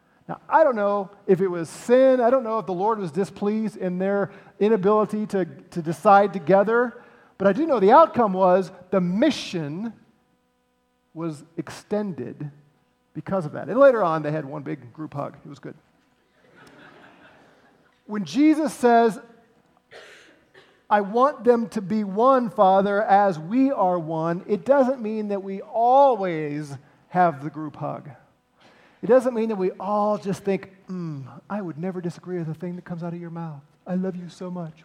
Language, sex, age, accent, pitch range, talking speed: English, male, 40-59, American, 160-215 Hz, 170 wpm